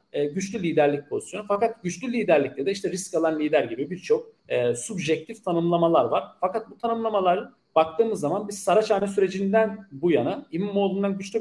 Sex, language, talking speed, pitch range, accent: male, Turkish, 160 wpm, 160-225 Hz, native